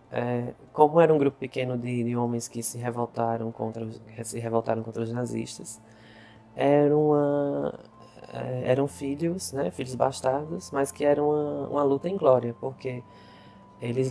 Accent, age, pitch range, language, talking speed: Brazilian, 20-39, 115-140 Hz, Portuguese, 130 wpm